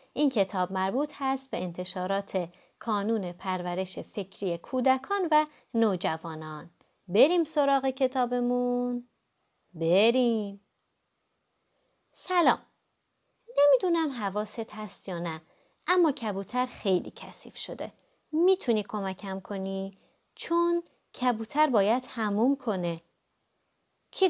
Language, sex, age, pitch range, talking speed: Persian, female, 30-49, 205-325 Hz, 90 wpm